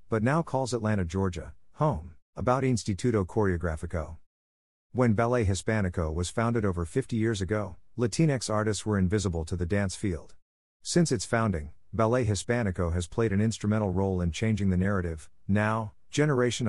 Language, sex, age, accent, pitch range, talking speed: English, male, 50-69, American, 90-115 Hz, 150 wpm